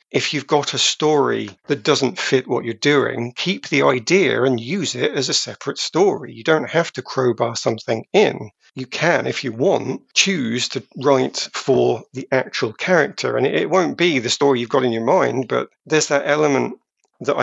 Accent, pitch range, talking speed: British, 120-140 Hz, 195 wpm